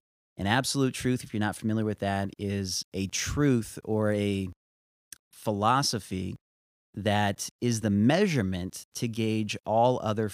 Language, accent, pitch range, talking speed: English, American, 95-120 Hz, 135 wpm